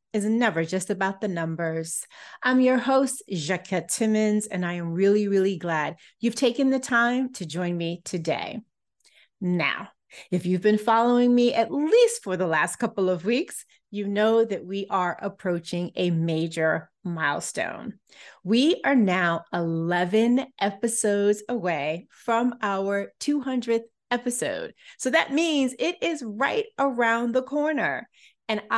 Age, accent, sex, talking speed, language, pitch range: 30-49, American, female, 140 wpm, English, 180-245 Hz